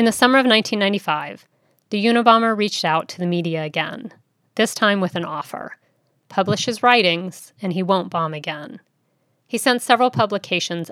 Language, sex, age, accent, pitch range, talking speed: English, female, 40-59, American, 170-210 Hz, 165 wpm